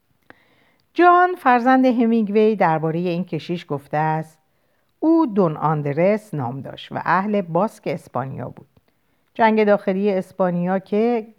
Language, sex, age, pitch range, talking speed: Persian, female, 50-69, 155-225 Hz, 115 wpm